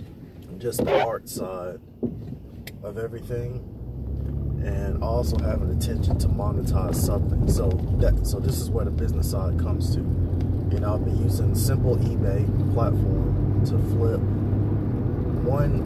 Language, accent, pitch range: English, American, 100-120 Hz